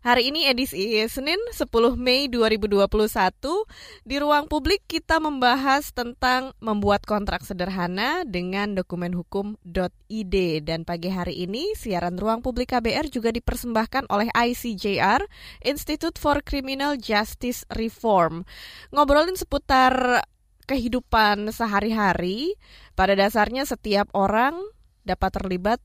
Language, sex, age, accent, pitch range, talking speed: Indonesian, female, 20-39, native, 190-270 Hz, 105 wpm